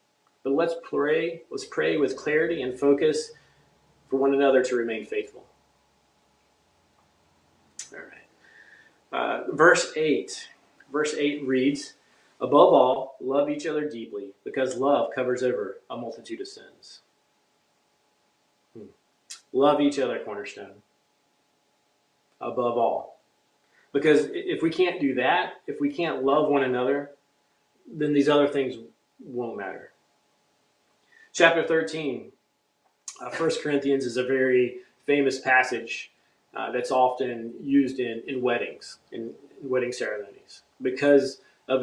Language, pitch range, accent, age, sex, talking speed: English, 130-150 Hz, American, 30-49, male, 120 wpm